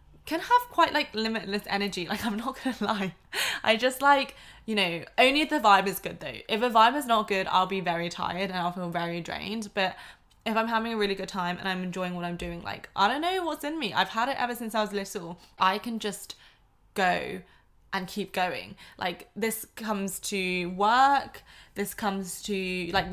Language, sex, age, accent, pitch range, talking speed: English, female, 20-39, British, 180-215 Hz, 215 wpm